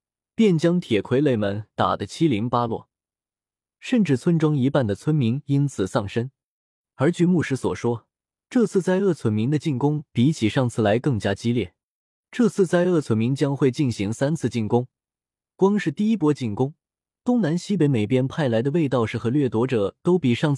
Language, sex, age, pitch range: Chinese, male, 20-39, 115-160 Hz